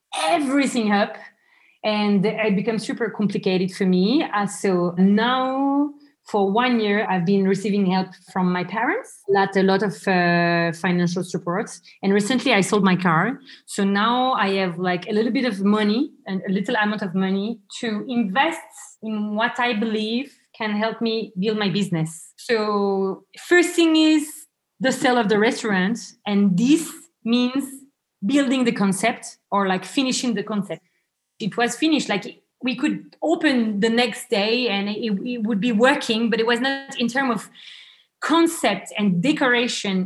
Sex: female